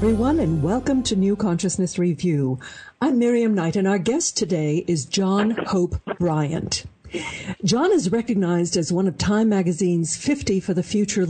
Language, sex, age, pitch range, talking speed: English, female, 60-79, 165-210 Hz, 160 wpm